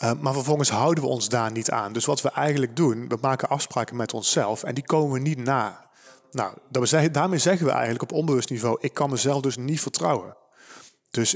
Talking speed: 210 wpm